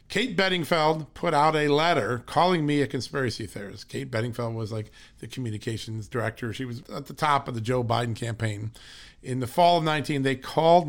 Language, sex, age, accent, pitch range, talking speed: English, male, 50-69, American, 115-165 Hz, 195 wpm